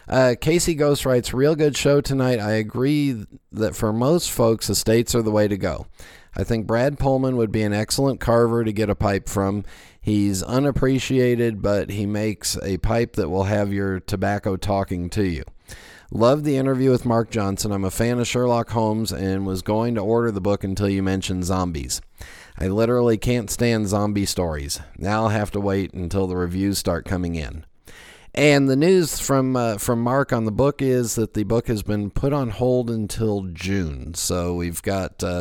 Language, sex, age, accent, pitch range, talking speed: English, male, 40-59, American, 90-120 Hz, 195 wpm